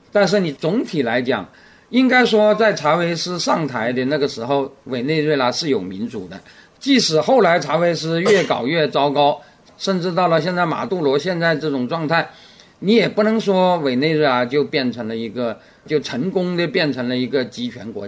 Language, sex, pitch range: Chinese, male, 135-185 Hz